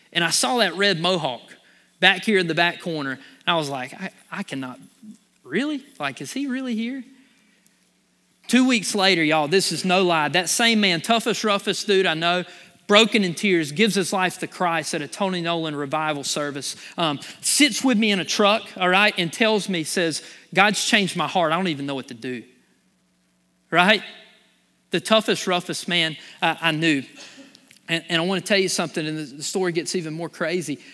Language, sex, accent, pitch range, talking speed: English, male, American, 160-220 Hz, 195 wpm